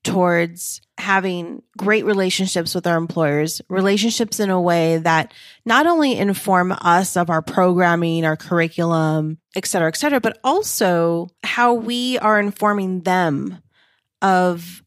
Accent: American